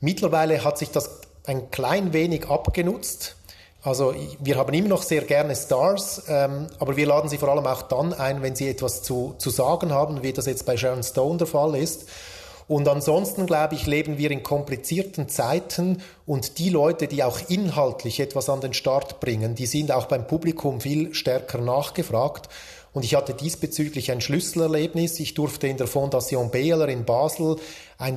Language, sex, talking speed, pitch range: German, male, 180 wpm, 135-170 Hz